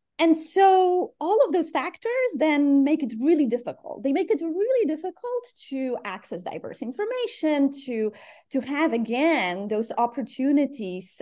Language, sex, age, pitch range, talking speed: English, female, 30-49, 205-320 Hz, 140 wpm